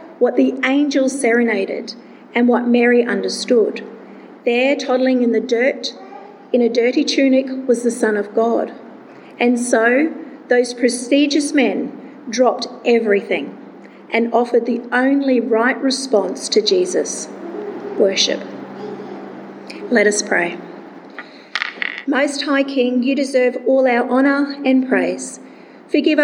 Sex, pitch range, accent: female, 225-265 Hz, Australian